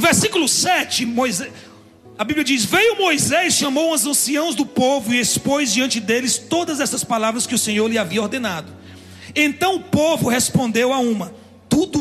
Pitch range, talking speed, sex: 195-290 Hz, 165 wpm, male